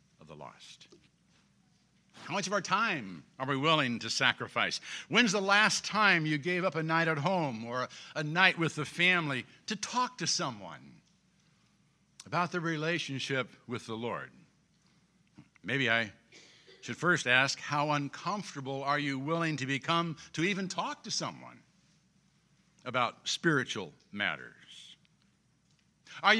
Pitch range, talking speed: 140-200 Hz, 135 wpm